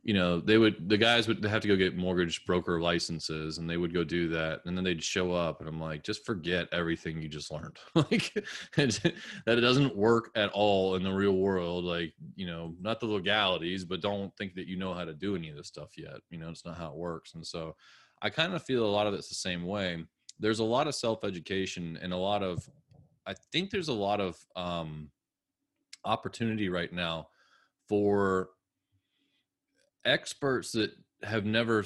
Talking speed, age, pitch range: 205 wpm, 20-39, 90-110 Hz